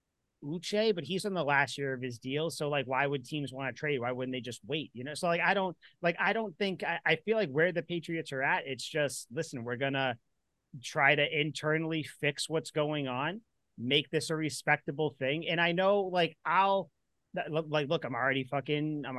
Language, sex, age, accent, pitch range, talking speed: English, male, 30-49, American, 140-175 Hz, 220 wpm